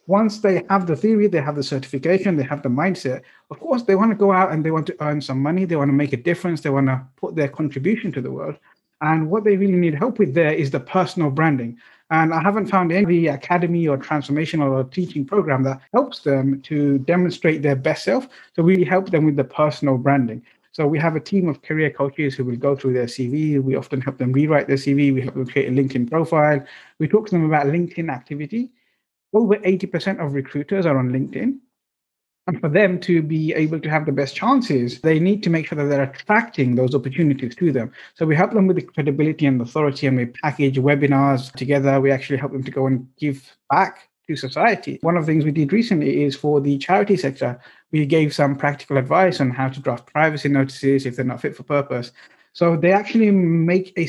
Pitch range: 140-180 Hz